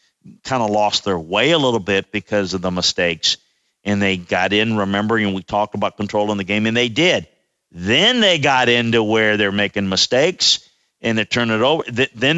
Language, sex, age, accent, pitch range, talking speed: English, male, 50-69, American, 105-140 Hz, 200 wpm